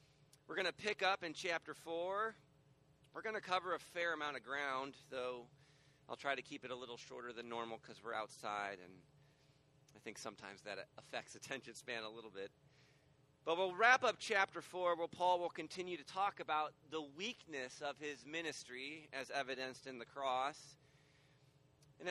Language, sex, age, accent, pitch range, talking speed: English, male, 40-59, American, 135-165 Hz, 180 wpm